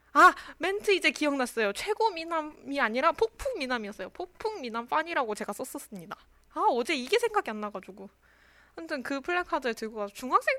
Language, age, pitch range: Korean, 20-39, 210-285 Hz